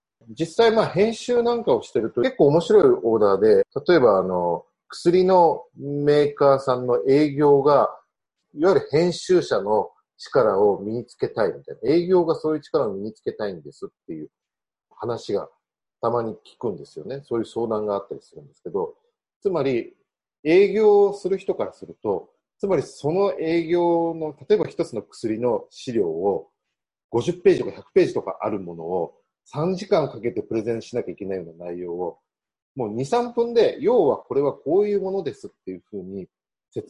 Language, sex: Japanese, male